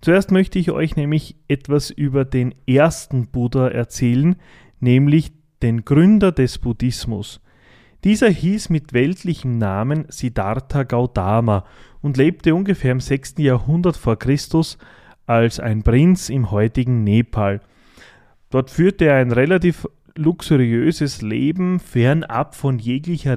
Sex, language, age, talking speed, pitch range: male, German, 30-49, 120 wpm, 115-150 Hz